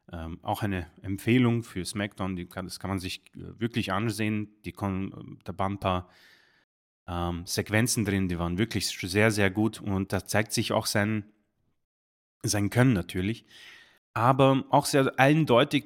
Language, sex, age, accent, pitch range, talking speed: German, male, 30-49, German, 105-135 Hz, 160 wpm